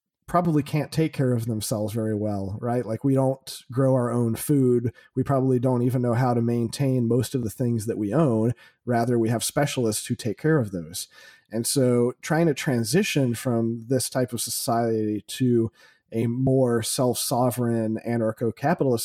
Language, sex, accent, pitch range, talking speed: English, male, American, 115-135 Hz, 175 wpm